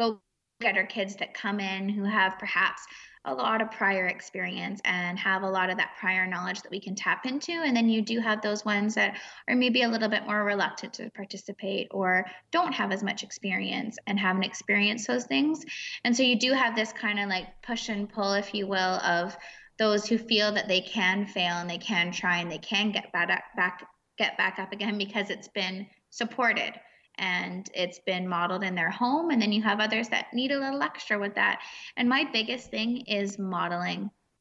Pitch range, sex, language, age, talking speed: 190-225 Hz, female, English, 20-39, 215 wpm